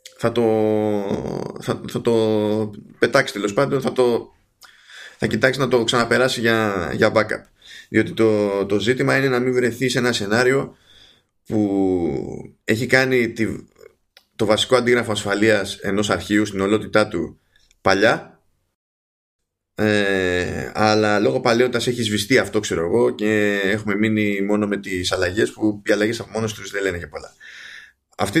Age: 20-39